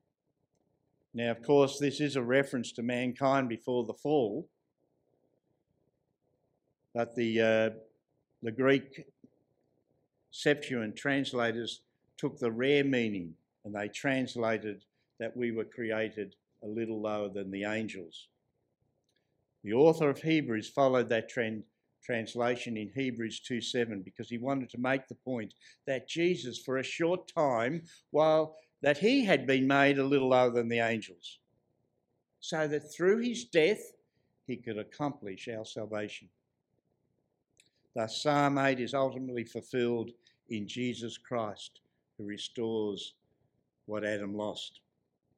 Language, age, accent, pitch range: English, 60-79, Australian, 110-140 Hz